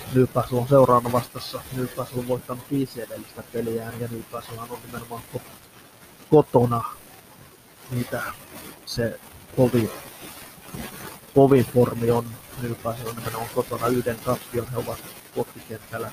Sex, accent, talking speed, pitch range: male, native, 110 wpm, 115-125 Hz